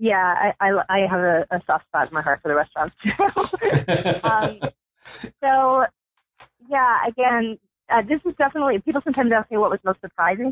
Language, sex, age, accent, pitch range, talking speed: English, female, 30-49, American, 170-210 Hz, 185 wpm